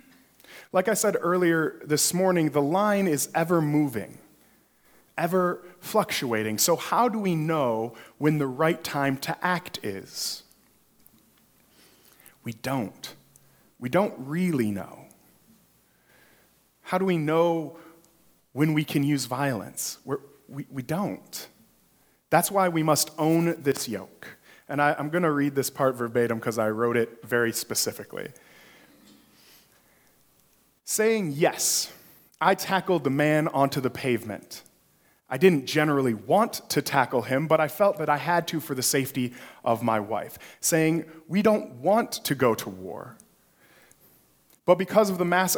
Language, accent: English, American